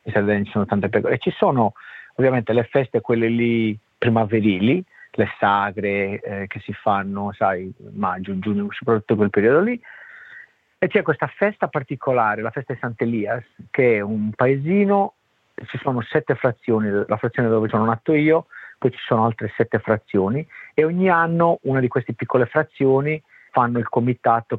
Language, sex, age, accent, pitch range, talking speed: Italian, male, 40-59, native, 110-150 Hz, 160 wpm